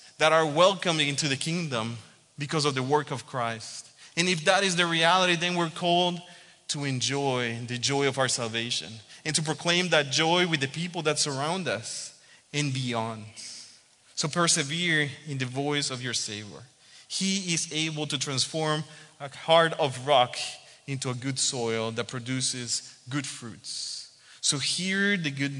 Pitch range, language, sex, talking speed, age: 130-160 Hz, English, male, 165 wpm, 30-49